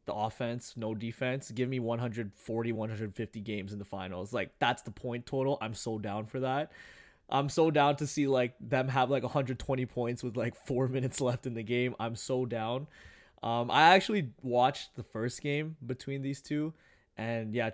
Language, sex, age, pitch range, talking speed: English, male, 20-39, 110-130 Hz, 190 wpm